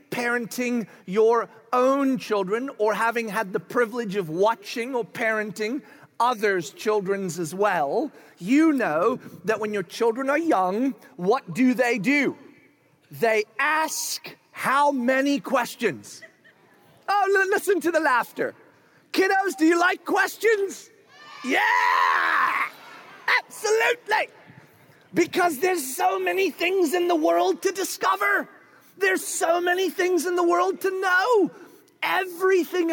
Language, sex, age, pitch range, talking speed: English, male, 40-59, 235-360 Hz, 120 wpm